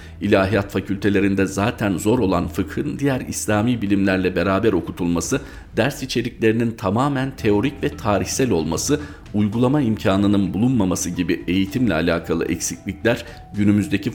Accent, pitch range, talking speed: native, 90-110 Hz, 110 wpm